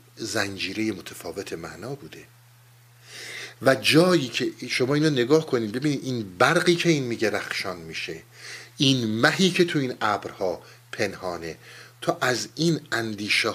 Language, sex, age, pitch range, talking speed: Persian, male, 50-69, 115-135 Hz, 135 wpm